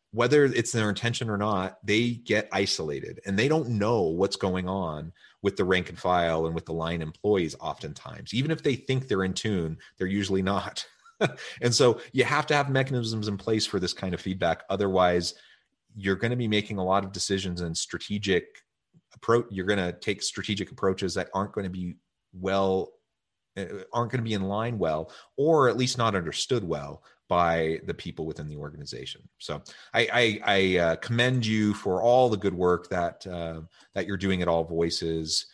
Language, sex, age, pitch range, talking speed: English, male, 30-49, 85-105 Hz, 190 wpm